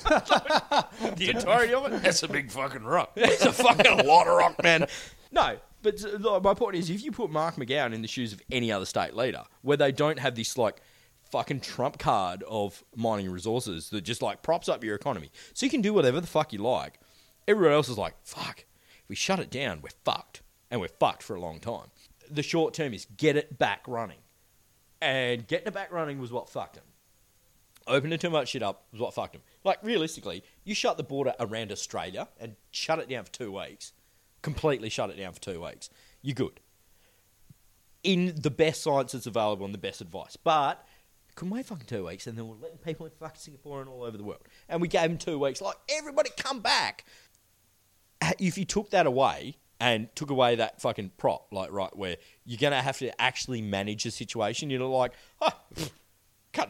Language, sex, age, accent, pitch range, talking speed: English, male, 30-49, Australian, 110-165 Hz, 210 wpm